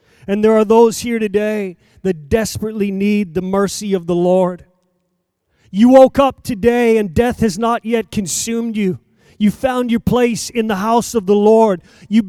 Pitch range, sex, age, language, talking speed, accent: 180-230 Hz, male, 30-49, English, 175 wpm, American